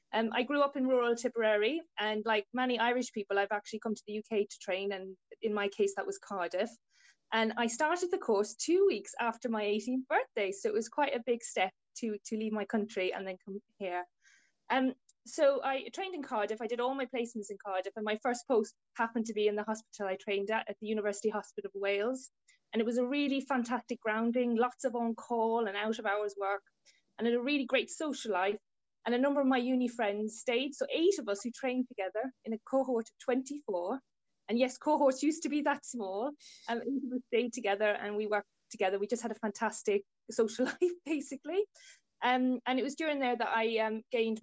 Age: 20-39